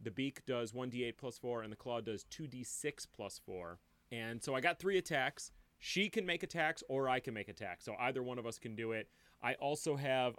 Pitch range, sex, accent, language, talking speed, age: 115-145 Hz, male, American, English, 225 wpm, 30-49